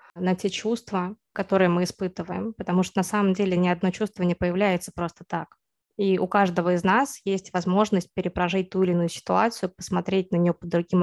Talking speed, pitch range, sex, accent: 190 wpm, 175-200 Hz, female, native